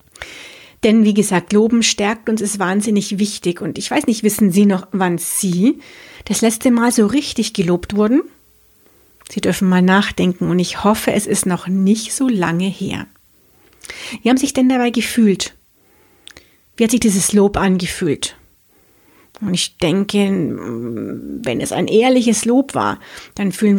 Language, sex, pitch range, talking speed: German, female, 195-230 Hz, 155 wpm